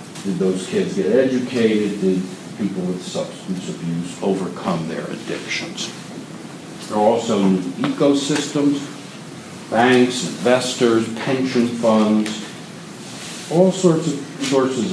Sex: male